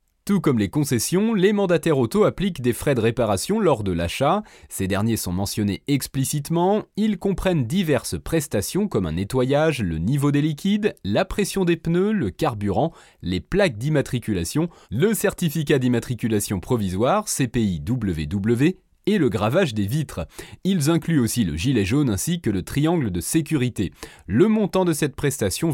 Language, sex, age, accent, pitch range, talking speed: French, male, 30-49, French, 110-170 Hz, 155 wpm